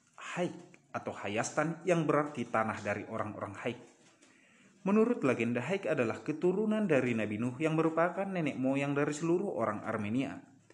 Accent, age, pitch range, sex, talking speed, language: native, 30-49, 115-175 Hz, male, 140 wpm, Indonesian